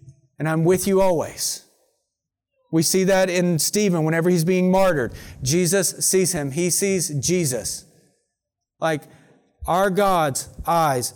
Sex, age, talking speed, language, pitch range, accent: male, 40-59, 130 wpm, English, 140-180 Hz, American